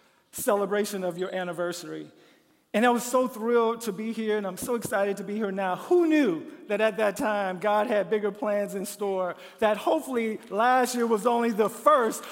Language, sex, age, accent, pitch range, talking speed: English, male, 50-69, American, 175-230 Hz, 195 wpm